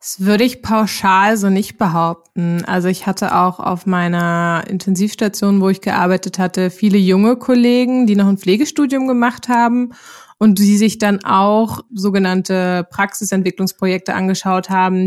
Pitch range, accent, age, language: 190-225 Hz, German, 20-39, German